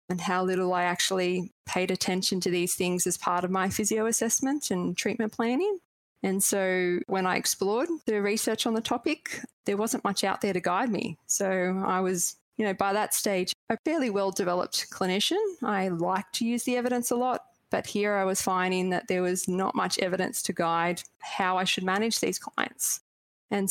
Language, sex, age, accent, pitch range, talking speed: English, female, 20-39, Australian, 180-215 Hz, 195 wpm